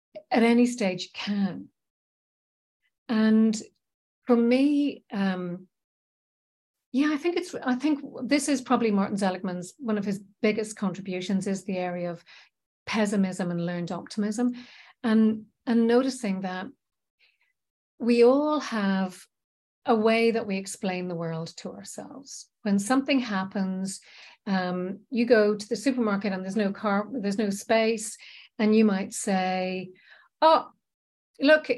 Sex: female